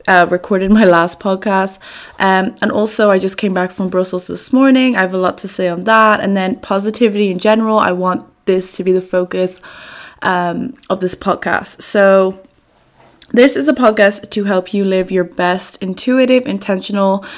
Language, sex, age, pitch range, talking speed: English, female, 20-39, 185-225 Hz, 185 wpm